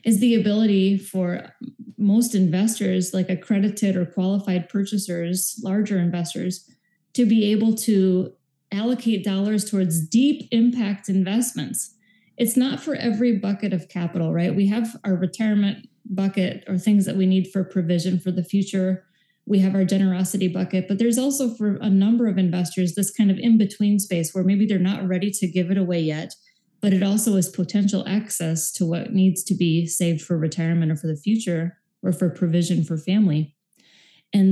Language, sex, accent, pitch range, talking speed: English, female, American, 185-220 Hz, 170 wpm